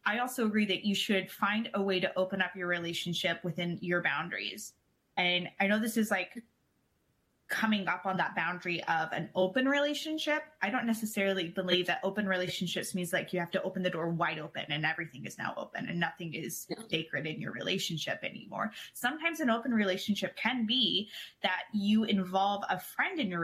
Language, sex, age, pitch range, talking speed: English, female, 20-39, 175-215 Hz, 190 wpm